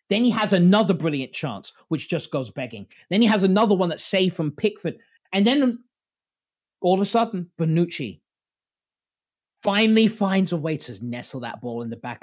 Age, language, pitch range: 20-39, English, 125-175 Hz